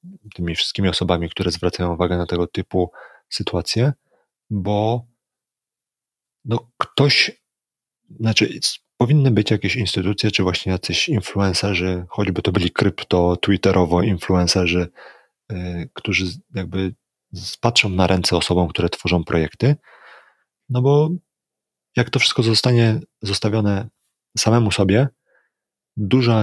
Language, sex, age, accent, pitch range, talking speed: Polish, male, 30-49, native, 90-115 Hz, 100 wpm